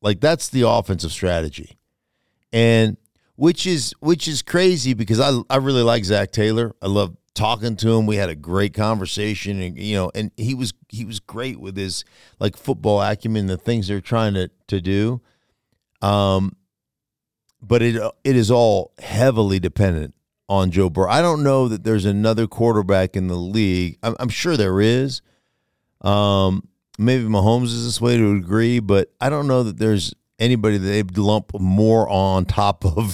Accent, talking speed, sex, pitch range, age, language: American, 175 wpm, male, 100-120 Hz, 50-69, English